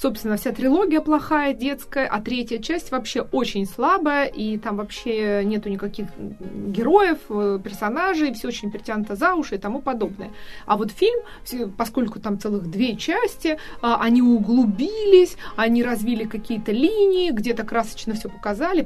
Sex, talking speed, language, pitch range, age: female, 140 wpm, Russian, 210-275 Hz, 20-39